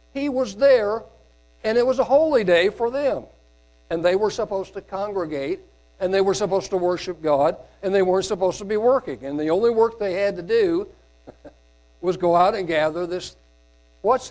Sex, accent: male, American